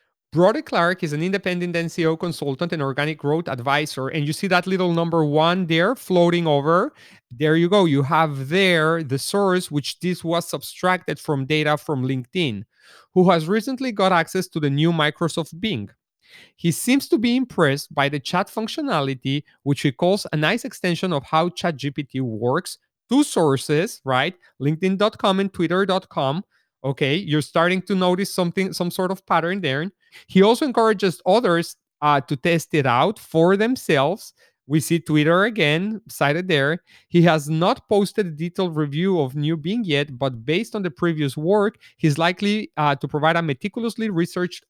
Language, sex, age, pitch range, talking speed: English, male, 30-49, 145-185 Hz, 170 wpm